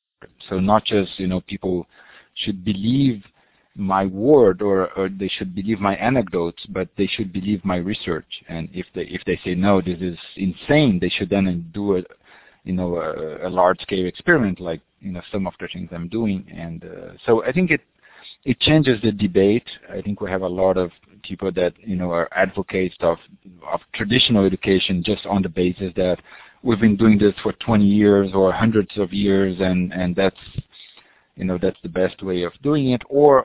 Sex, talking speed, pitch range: male, 195 wpm, 90-105 Hz